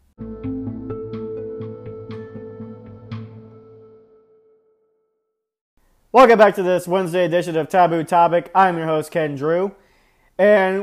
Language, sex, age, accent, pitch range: English, male, 30-49, American, 155-195 Hz